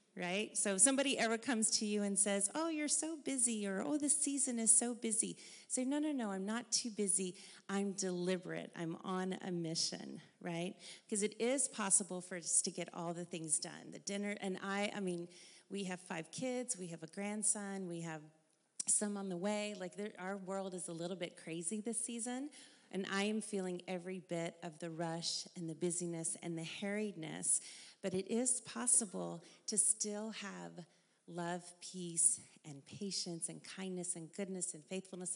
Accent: American